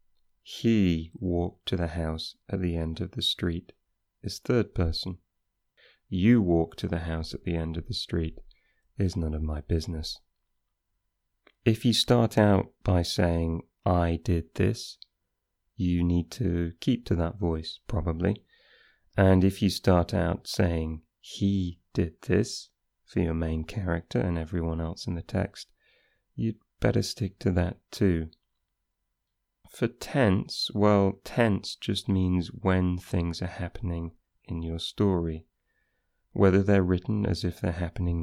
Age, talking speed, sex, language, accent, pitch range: 30-49, 145 wpm, male, English, British, 85-100 Hz